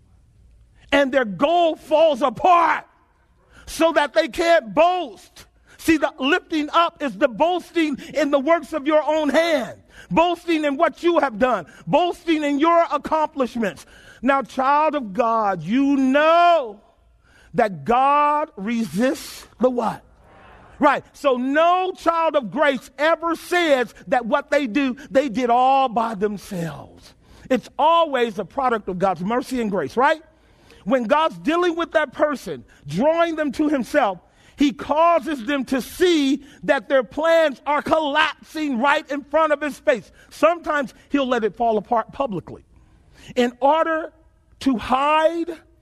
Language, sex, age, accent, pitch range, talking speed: English, male, 40-59, American, 255-320 Hz, 145 wpm